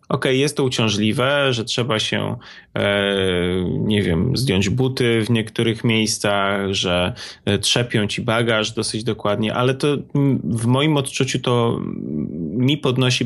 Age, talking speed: 20-39, 135 wpm